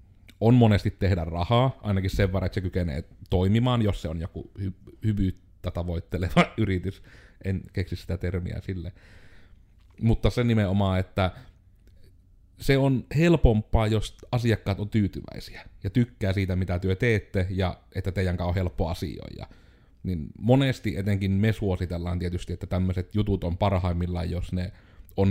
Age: 30-49